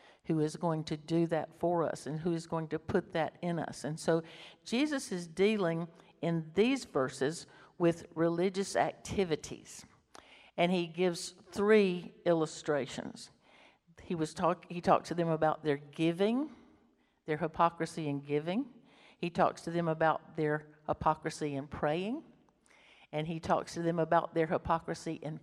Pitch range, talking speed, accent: 160-185 Hz, 155 wpm, American